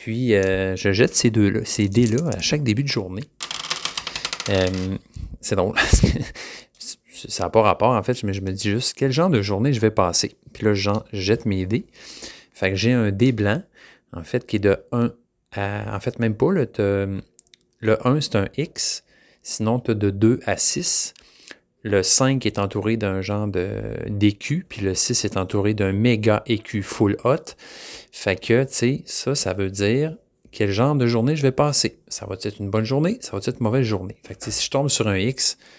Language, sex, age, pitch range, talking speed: French, male, 30-49, 100-125 Hz, 205 wpm